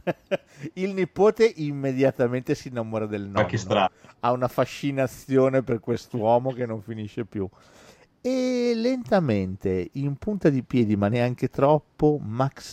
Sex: male